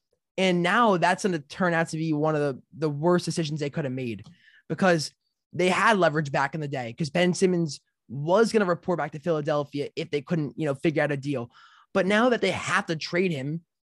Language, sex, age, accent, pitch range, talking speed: English, male, 20-39, American, 145-180 Hz, 235 wpm